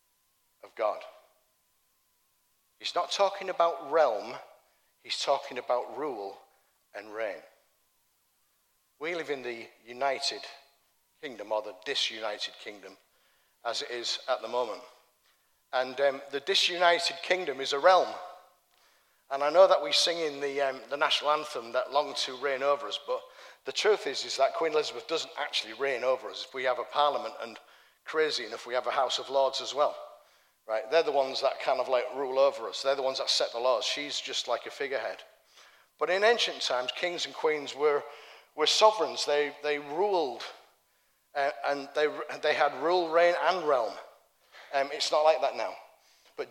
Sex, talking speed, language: male, 175 wpm, English